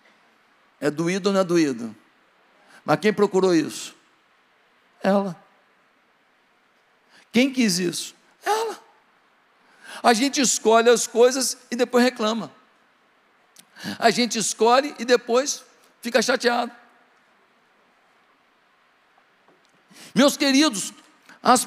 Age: 60-79